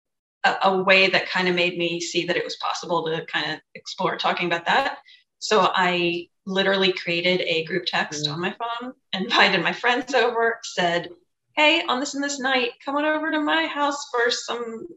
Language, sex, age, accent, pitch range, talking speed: English, female, 30-49, American, 175-255 Hz, 195 wpm